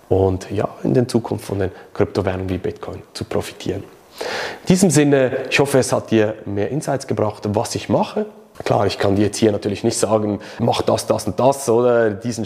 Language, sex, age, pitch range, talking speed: German, male, 30-49, 105-140 Hz, 200 wpm